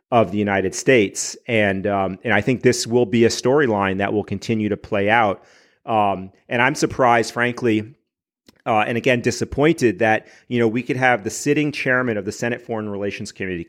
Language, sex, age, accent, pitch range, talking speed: English, male, 40-59, American, 100-115 Hz, 195 wpm